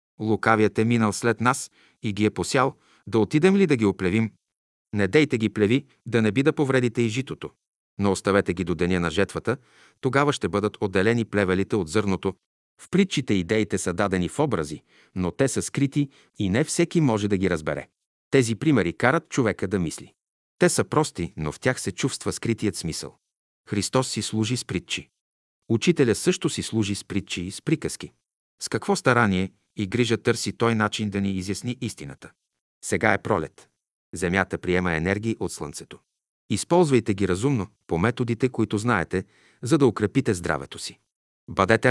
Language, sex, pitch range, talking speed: Bulgarian, male, 100-130 Hz, 175 wpm